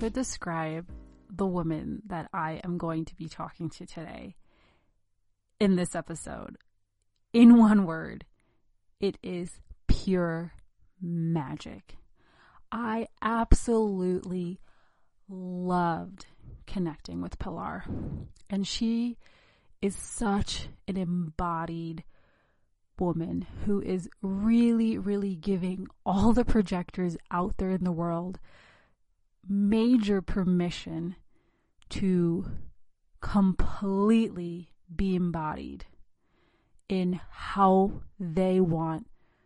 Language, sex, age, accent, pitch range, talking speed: English, female, 30-49, American, 165-200 Hz, 90 wpm